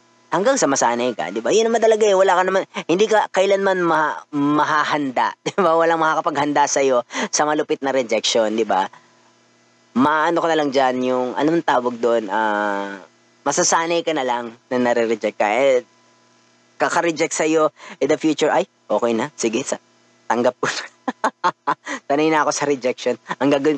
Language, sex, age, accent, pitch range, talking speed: Filipino, female, 20-39, native, 125-170 Hz, 175 wpm